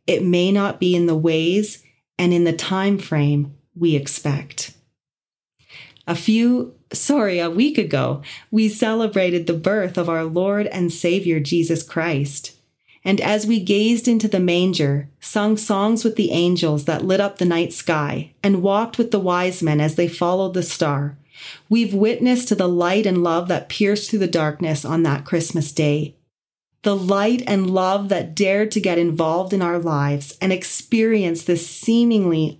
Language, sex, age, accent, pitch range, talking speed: English, female, 30-49, American, 160-200 Hz, 170 wpm